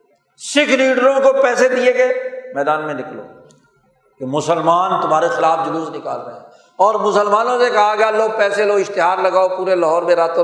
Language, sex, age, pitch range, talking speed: Urdu, male, 50-69, 190-300 Hz, 170 wpm